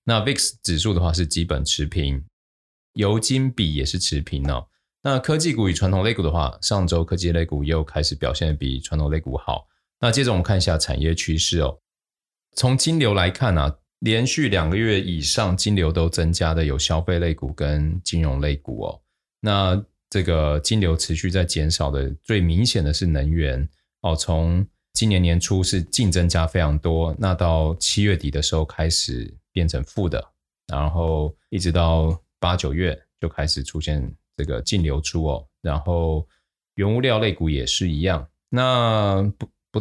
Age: 20-39